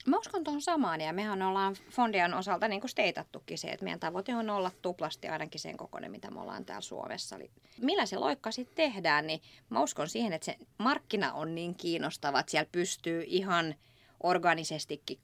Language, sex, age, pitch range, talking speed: Finnish, female, 30-49, 160-230 Hz, 185 wpm